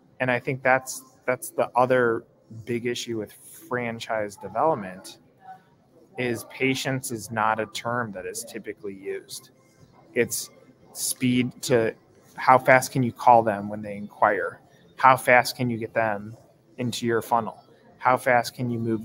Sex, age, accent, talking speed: male, 20-39, American, 150 wpm